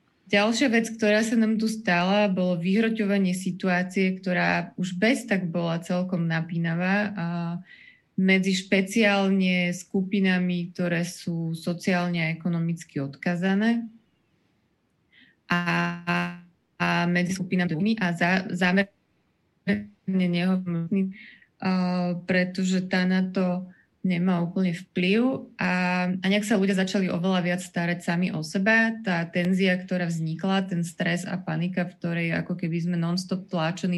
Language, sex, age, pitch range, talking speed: Slovak, female, 20-39, 175-200 Hz, 115 wpm